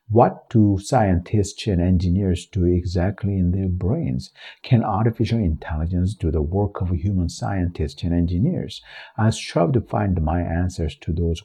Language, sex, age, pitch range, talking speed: English, male, 50-69, 80-120 Hz, 150 wpm